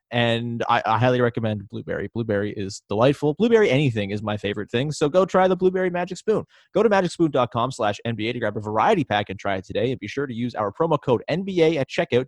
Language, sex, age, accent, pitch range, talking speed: English, male, 20-39, American, 105-145 Hz, 225 wpm